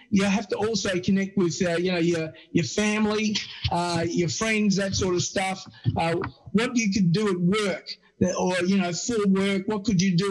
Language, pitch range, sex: English, 165-195 Hz, male